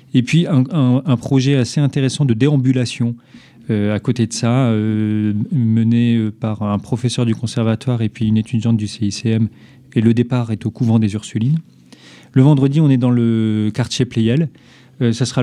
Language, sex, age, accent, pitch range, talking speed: French, male, 40-59, French, 110-130 Hz, 185 wpm